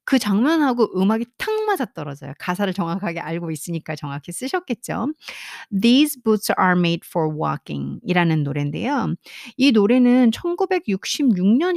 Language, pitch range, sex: Korean, 170-245 Hz, female